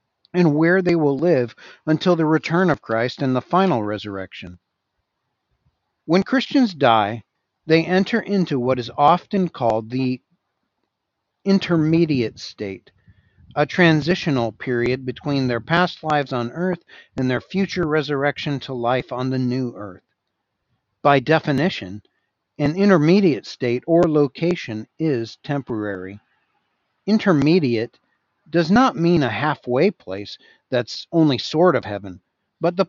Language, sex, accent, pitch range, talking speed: English, male, American, 120-170 Hz, 125 wpm